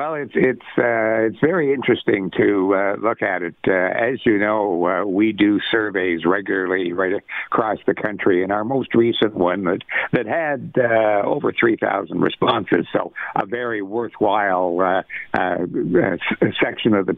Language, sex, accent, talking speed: English, male, American, 160 wpm